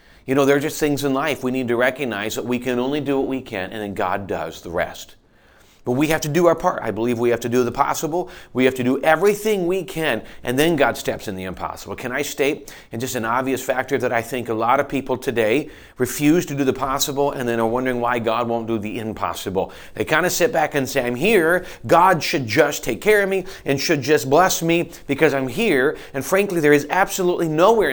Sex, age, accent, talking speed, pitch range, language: male, 40-59, American, 250 wpm, 120-155 Hz, English